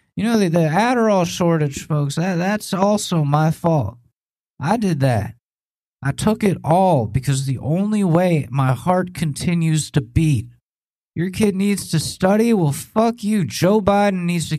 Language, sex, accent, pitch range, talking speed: English, male, American, 150-200 Hz, 165 wpm